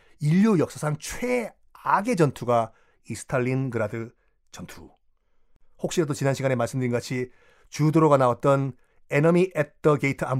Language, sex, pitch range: Korean, male, 125-180 Hz